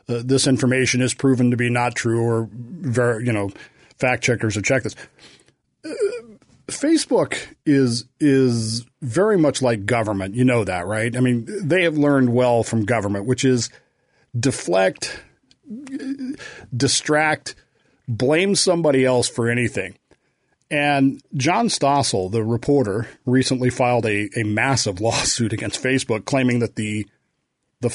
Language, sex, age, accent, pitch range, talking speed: English, male, 40-59, American, 120-145 Hz, 135 wpm